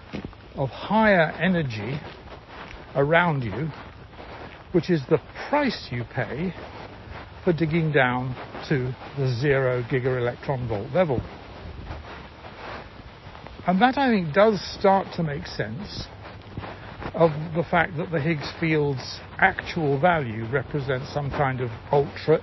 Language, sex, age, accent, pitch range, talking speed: English, male, 60-79, British, 105-155 Hz, 120 wpm